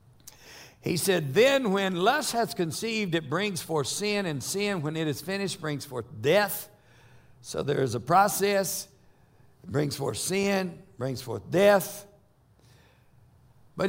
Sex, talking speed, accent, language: male, 145 wpm, American, English